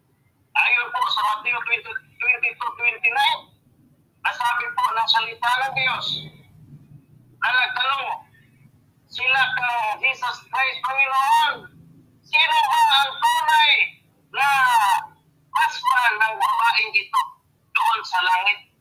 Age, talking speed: 40-59, 95 wpm